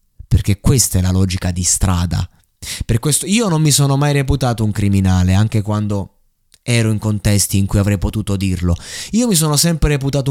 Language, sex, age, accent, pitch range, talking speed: Italian, male, 20-39, native, 100-125 Hz, 185 wpm